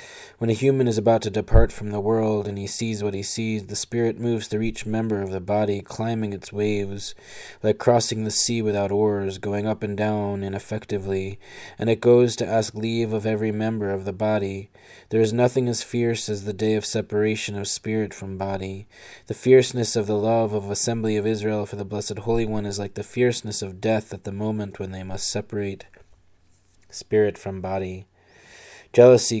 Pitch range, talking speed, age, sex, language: 100-110 Hz, 195 wpm, 20-39, male, English